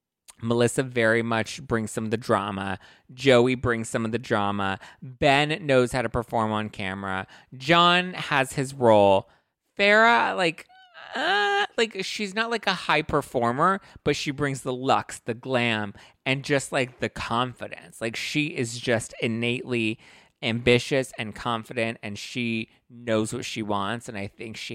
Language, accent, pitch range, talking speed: English, American, 105-130 Hz, 160 wpm